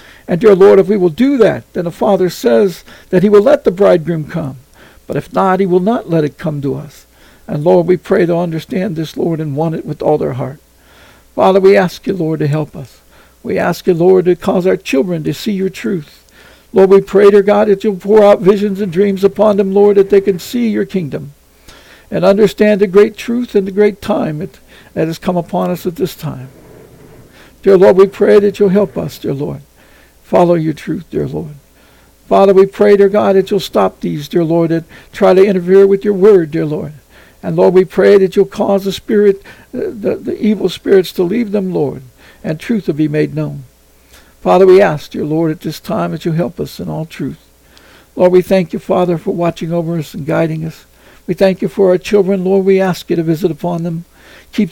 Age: 60-79